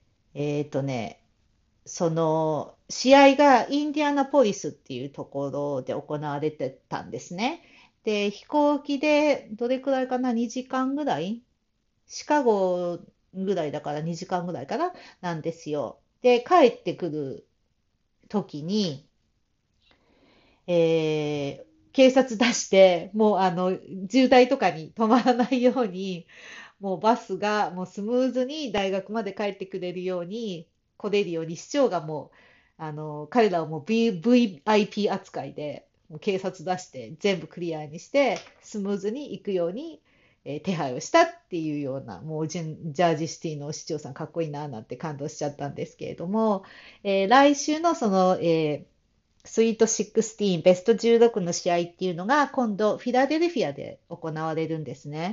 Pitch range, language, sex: 160-235 Hz, Japanese, female